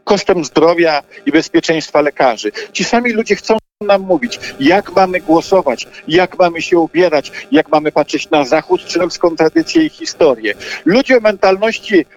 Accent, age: native, 50-69